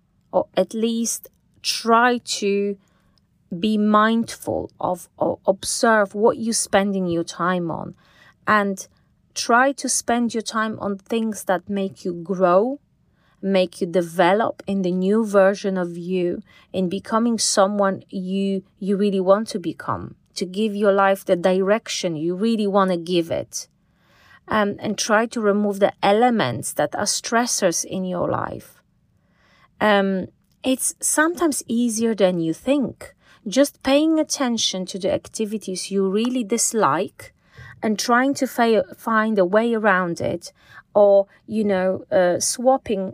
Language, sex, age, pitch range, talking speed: English, female, 30-49, 190-230 Hz, 140 wpm